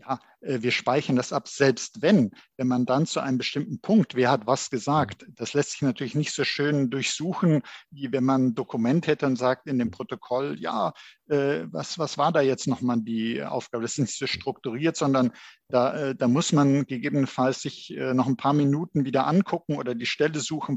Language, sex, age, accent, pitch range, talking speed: German, male, 50-69, German, 125-150 Hz, 195 wpm